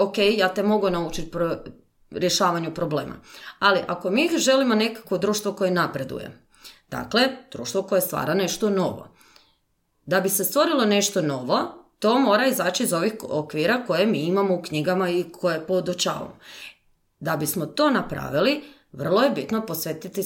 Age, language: 30-49, Croatian